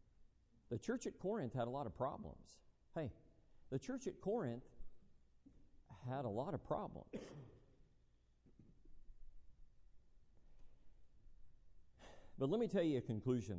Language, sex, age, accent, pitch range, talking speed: English, male, 50-69, American, 90-115 Hz, 115 wpm